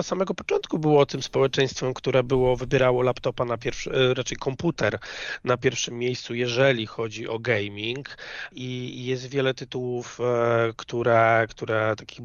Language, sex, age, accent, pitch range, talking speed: Polish, male, 30-49, native, 115-130 Hz, 130 wpm